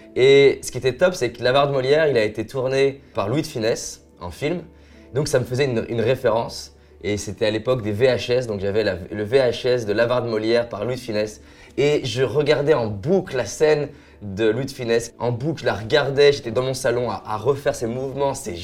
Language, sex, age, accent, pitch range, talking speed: French, male, 20-39, French, 110-135 Hz, 230 wpm